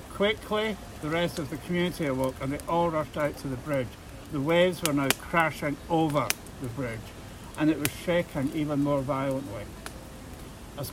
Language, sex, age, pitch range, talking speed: English, male, 60-79, 105-155 Hz, 170 wpm